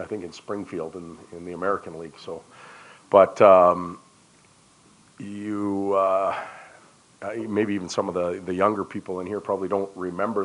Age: 40-59